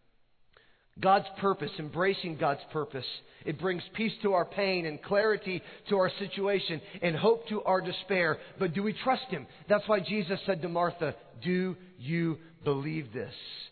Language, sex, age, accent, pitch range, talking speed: English, male, 40-59, American, 175-215 Hz, 160 wpm